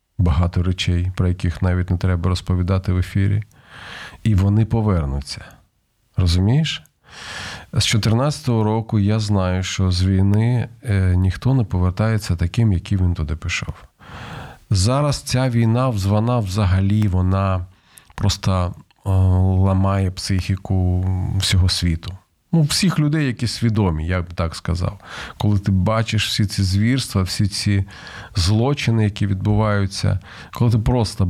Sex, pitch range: male, 90-110 Hz